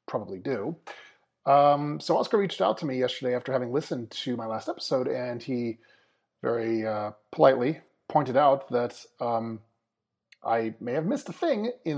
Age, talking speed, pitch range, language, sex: 30-49, 165 wpm, 115-155 Hz, English, male